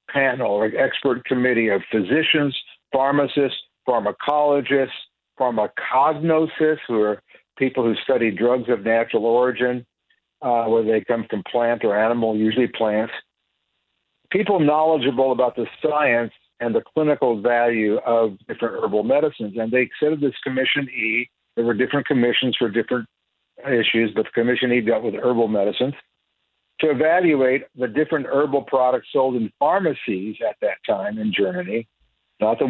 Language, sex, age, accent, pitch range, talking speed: English, male, 60-79, American, 115-145 Hz, 145 wpm